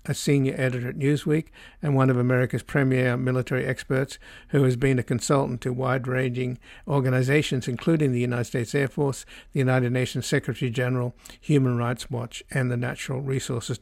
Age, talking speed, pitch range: 60-79, 165 wpm, 125-145 Hz